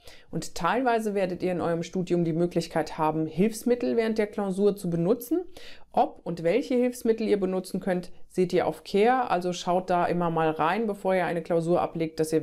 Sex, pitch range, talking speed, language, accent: female, 160-210 Hz, 195 wpm, Dutch, German